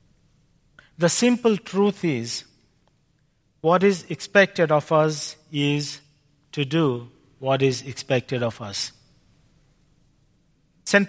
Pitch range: 140-180 Hz